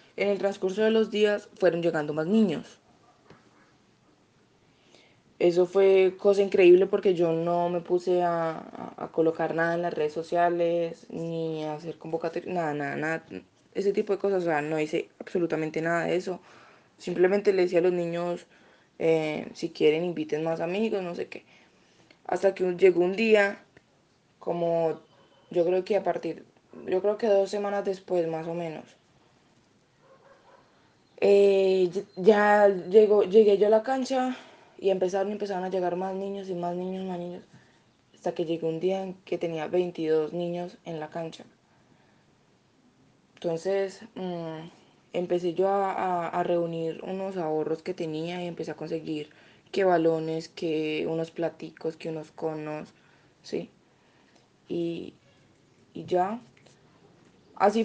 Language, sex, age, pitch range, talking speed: Spanish, female, 20-39, 165-195 Hz, 145 wpm